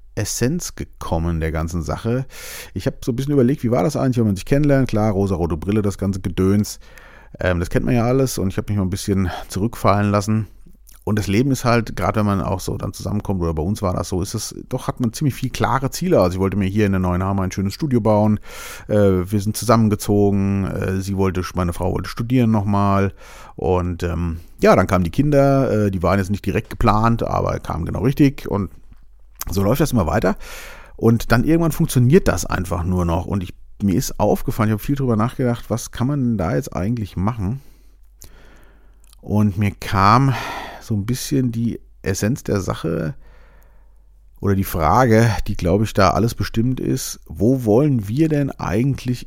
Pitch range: 95-120 Hz